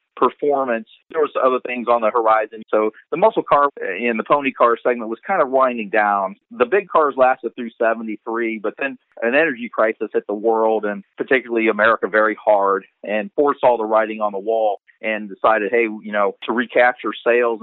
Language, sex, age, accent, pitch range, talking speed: English, male, 40-59, American, 105-125 Hz, 190 wpm